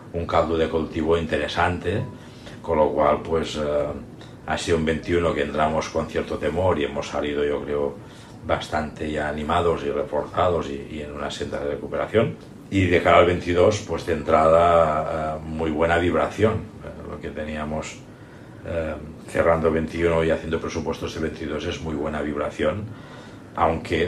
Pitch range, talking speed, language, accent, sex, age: 75-95 Hz, 160 wpm, Spanish, Spanish, male, 60-79